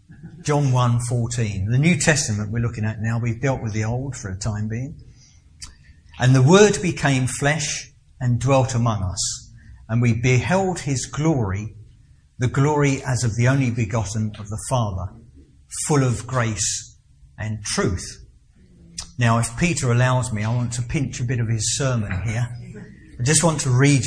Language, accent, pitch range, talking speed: English, British, 110-135 Hz, 170 wpm